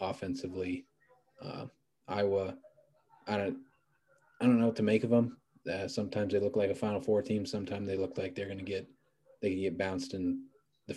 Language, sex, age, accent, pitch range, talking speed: English, male, 20-39, American, 95-115 Hz, 190 wpm